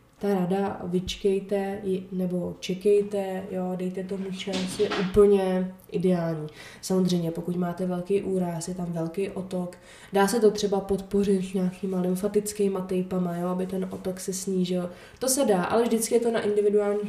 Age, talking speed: 20-39, 160 wpm